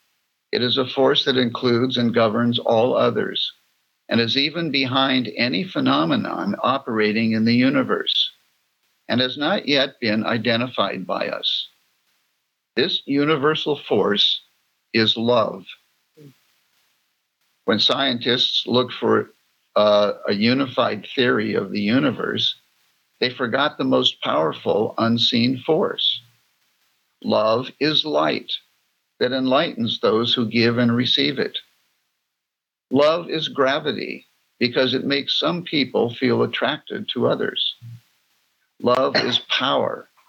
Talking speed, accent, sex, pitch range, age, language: 115 wpm, American, male, 115-135 Hz, 50-69, English